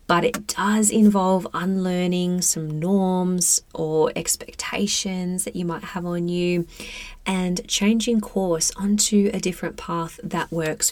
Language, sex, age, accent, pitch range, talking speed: English, female, 20-39, Australian, 165-200 Hz, 130 wpm